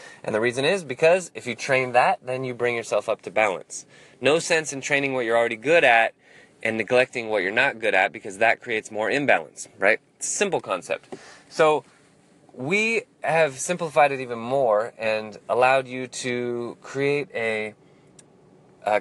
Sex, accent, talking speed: male, American, 170 wpm